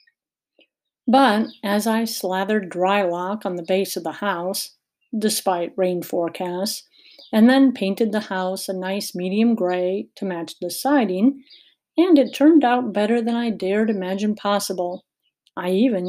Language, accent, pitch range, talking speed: English, American, 185-245 Hz, 150 wpm